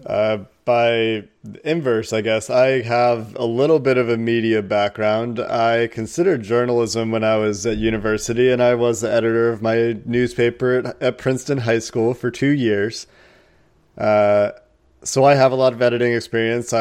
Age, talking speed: 20-39, 170 wpm